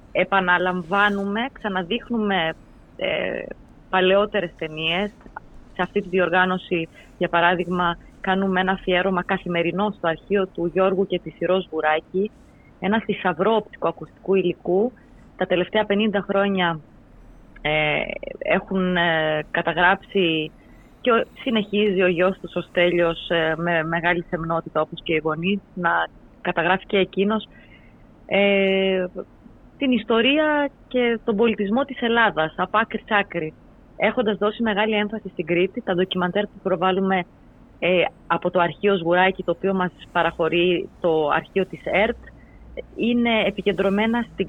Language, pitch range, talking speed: Greek, 175-205 Hz, 125 wpm